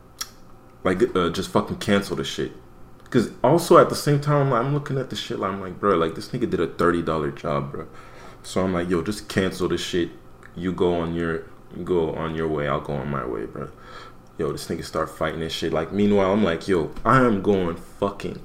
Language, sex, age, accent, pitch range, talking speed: English, male, 30-49, American, 85-110 Hz, 230 wpm